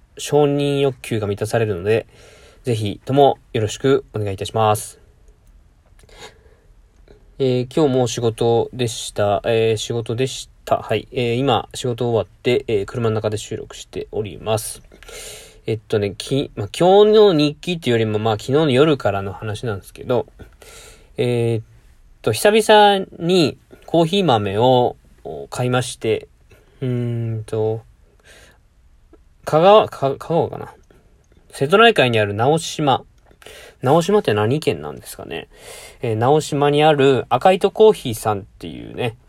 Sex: male